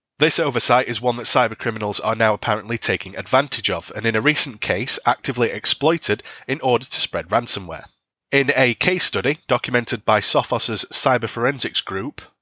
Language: English